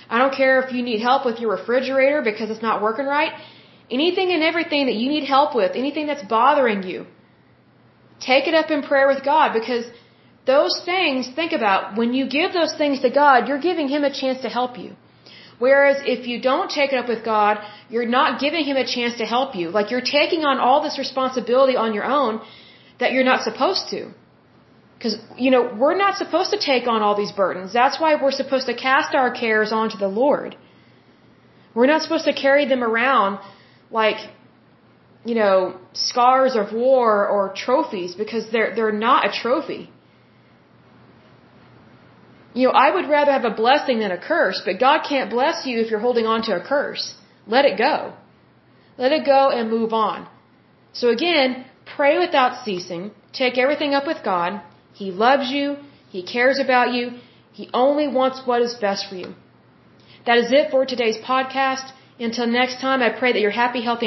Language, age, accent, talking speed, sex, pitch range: English, 30-49, American, 190 wpm, female, 225-280 Hz